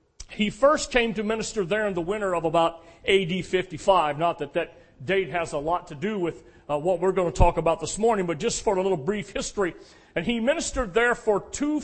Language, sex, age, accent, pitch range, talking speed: English, male, 40-59, American, 185-230 Hz, 230 wpm